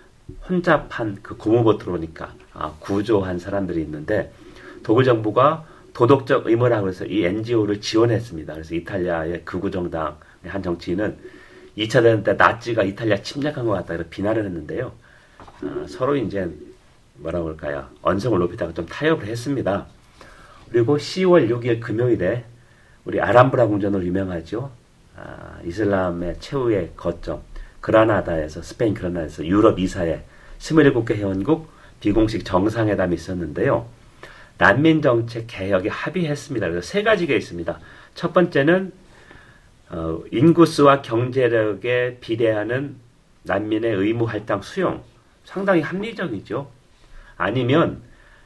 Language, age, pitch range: Korean, 40-59, 95-140 Hz